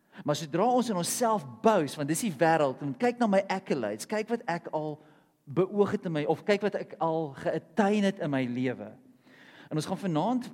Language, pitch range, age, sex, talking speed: English, 135-185 Hz, 40-59, male, 220 wpm